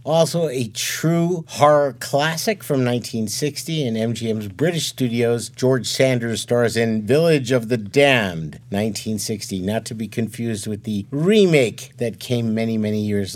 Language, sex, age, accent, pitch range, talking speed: English, male, 50-69, American, 120-170 Hz, 145 wpm